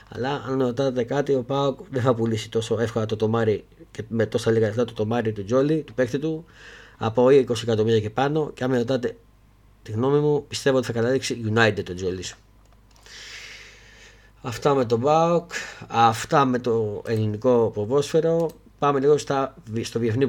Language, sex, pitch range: Greek, male, 115-140 Hz